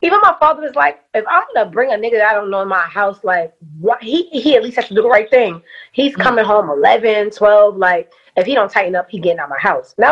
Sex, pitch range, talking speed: female, 185-250 Hz, 290 wpm